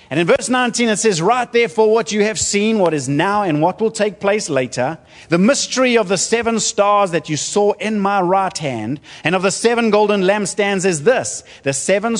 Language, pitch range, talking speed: English, 150-220 Hz, 215 wpm